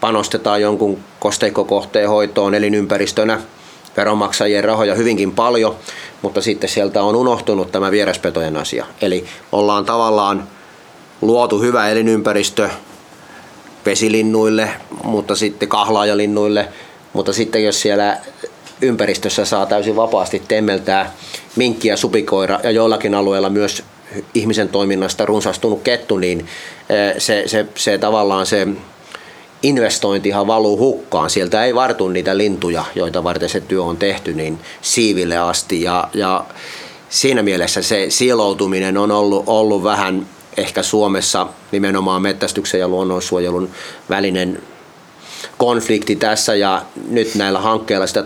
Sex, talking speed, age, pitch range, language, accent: male, 115 wpm, 30-49, 95-110 Hz, Finnish, native